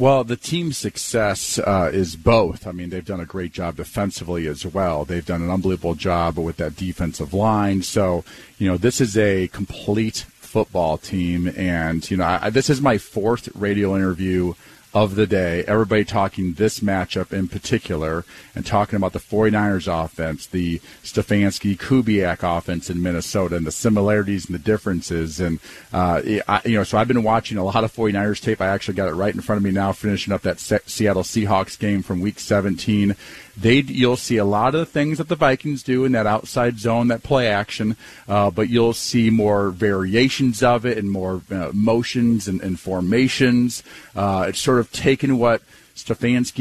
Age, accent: 40-59, American